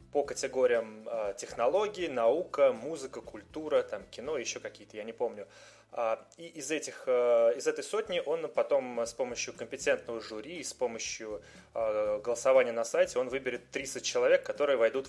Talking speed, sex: 145 wpm, male